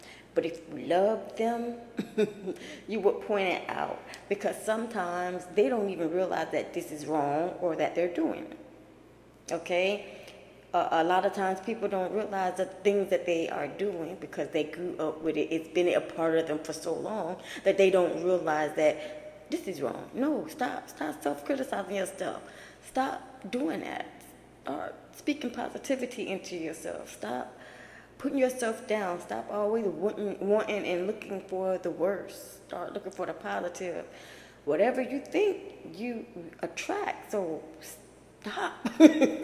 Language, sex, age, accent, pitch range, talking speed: English, female, 20-39, American, 175-225 Hz, 155 wpm